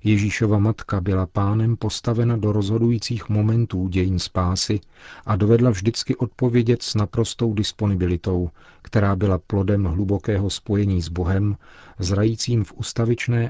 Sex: male